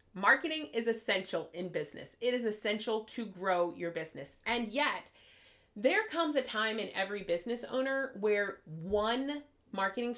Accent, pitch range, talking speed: American, 185-255 Hz, 145 wpm